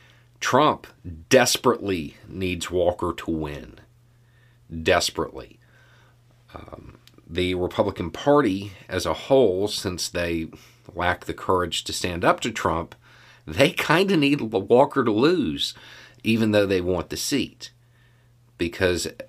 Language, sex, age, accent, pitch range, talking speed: English, male, 40-59, American, 85-120 Hz, 120 wpm